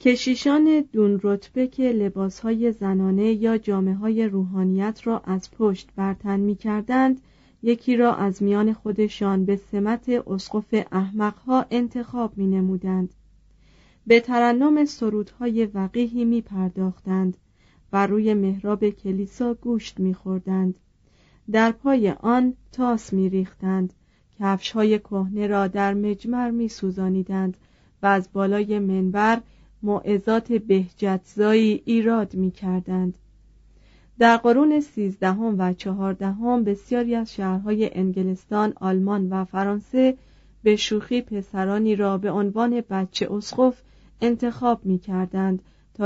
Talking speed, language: 110 wpm, Persian